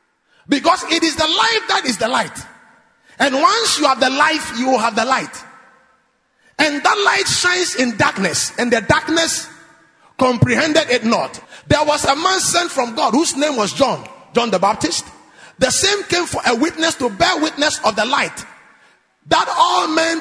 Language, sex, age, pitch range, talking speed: English, male, 30-49, 260-350 Hz, 180 wpm